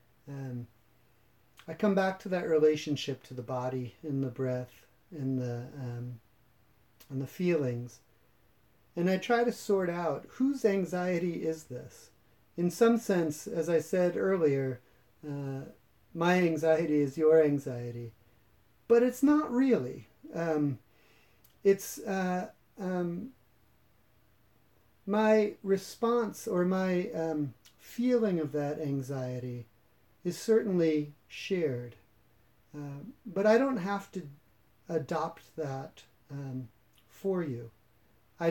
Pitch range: 130-180 Hz